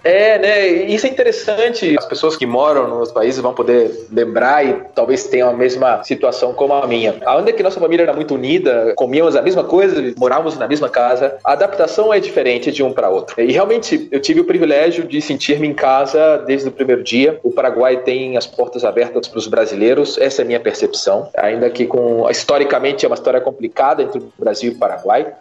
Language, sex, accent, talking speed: Portuguese, male, Brazilian, 210 wpm